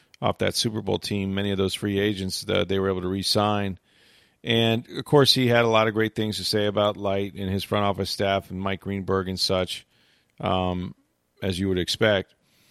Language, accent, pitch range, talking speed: English, American, 100-120 Hz, 210 wpm